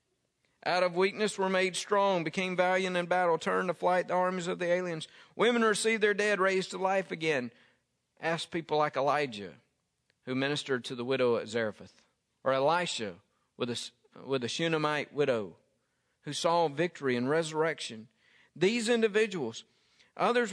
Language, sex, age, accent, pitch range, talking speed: English, male, 50-69, American, 150-195 Hz, 150 wpm